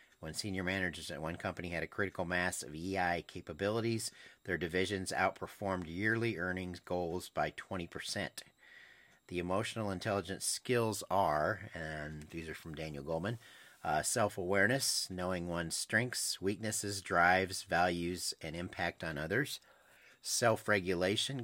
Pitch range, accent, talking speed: 85-105 Hz, American, 125 wpm